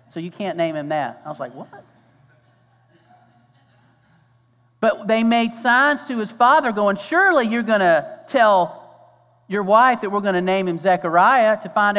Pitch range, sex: 135-200 Hz, male